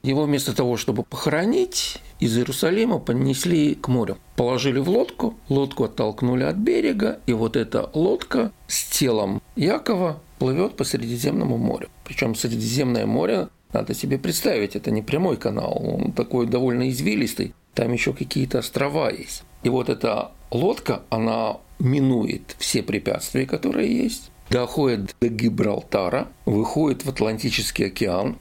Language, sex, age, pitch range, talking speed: Russian, male, 50-69, 110-135 Hz, 135 wpm